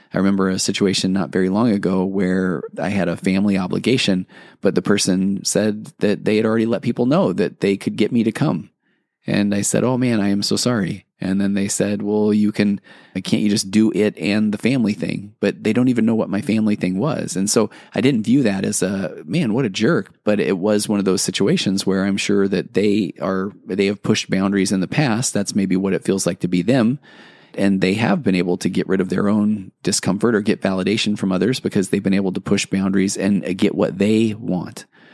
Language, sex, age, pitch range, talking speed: English, male, 30-49, 90-100 Hz, 235 wpm